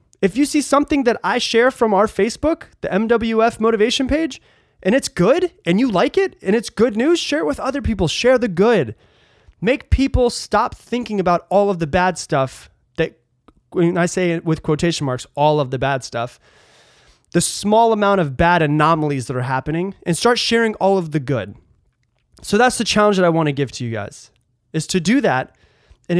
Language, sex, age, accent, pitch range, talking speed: English, male, 20-39, American, 145-225 Hz, 205 wpm